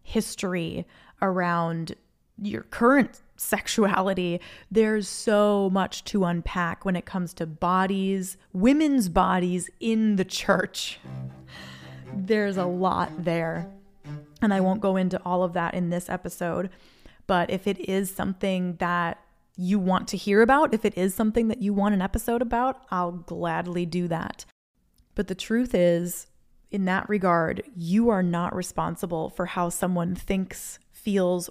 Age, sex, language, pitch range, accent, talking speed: 20-39, female, English, 175-210 Hz, American, 145 wpm